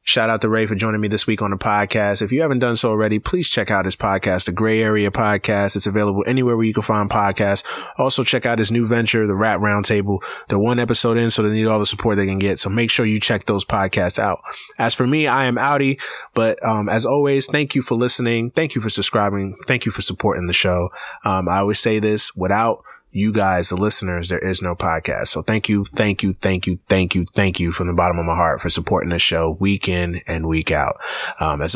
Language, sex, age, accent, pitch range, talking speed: English, male, 20-39, American, 100-125 Hz, 250 wpm